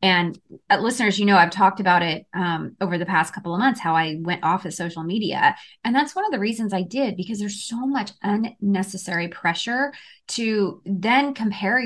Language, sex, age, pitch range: English, female, 20-39, 180-250 Hz